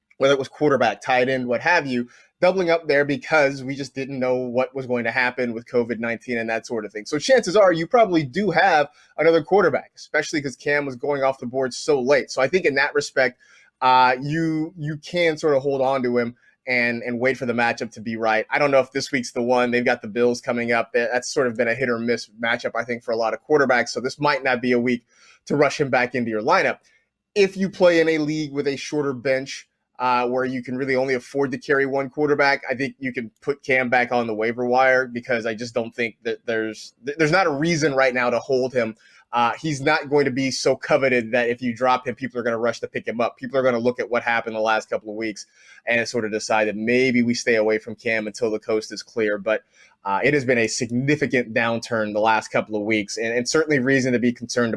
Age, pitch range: 20-39, 120-140 Hz